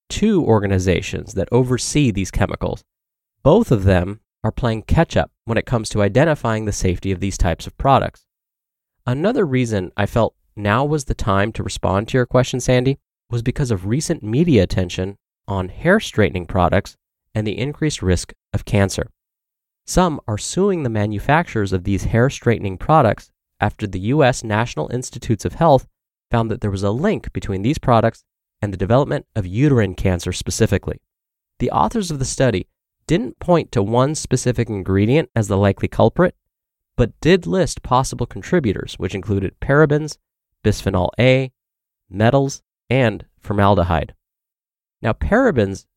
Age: 20-39